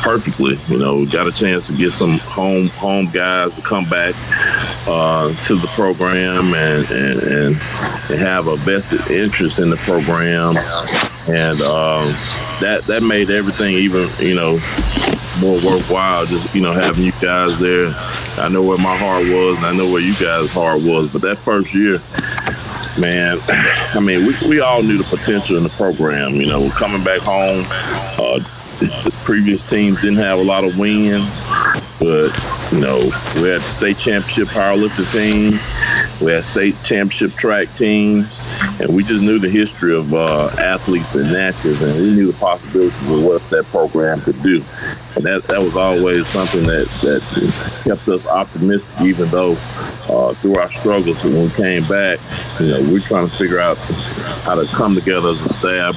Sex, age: male, 30-49